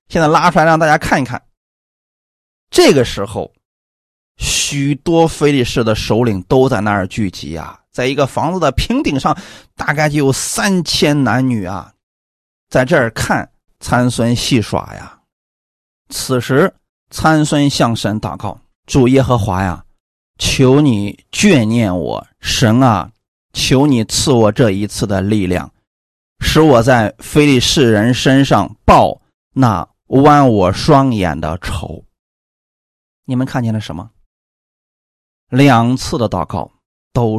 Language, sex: Chinese, male